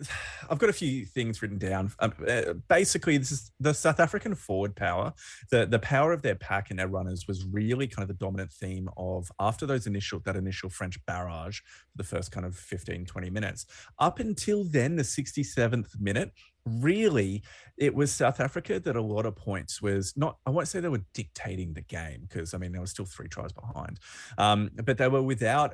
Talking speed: 205 wpm